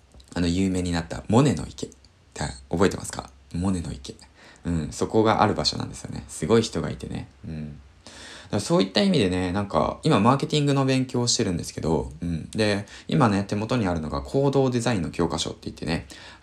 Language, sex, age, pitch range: Japanese, male, 20-39, 80-120 Hz